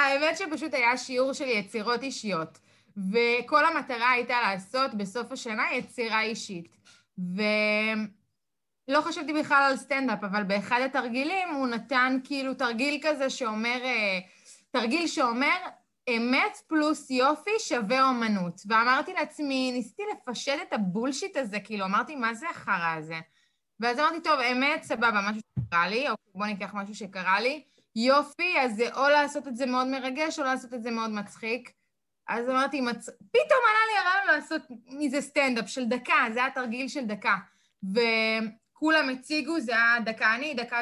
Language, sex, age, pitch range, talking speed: Hebrew, female, 20-39, 220-280 Hz, 150 wpm